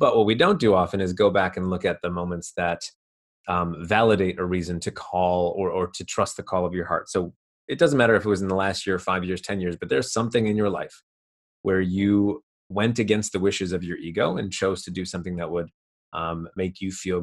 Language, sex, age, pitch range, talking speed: English, male, 30-49, 90-105 Hz, 245 wpm